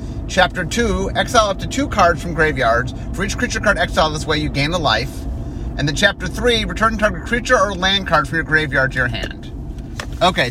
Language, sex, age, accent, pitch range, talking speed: English, male, 30-49, American, 120-170 Hz, 210 wpm